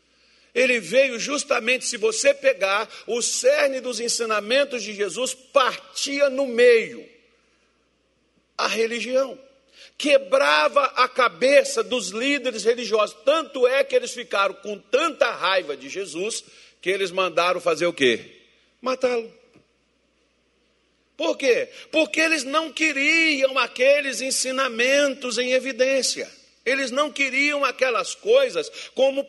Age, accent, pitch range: 50-69, Brazilian, 220-315 Hz